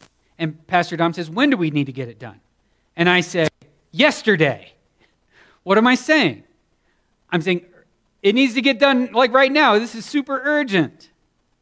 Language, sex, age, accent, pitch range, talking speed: English, male, 40-59, American, 155-230 Hz, 175 wpm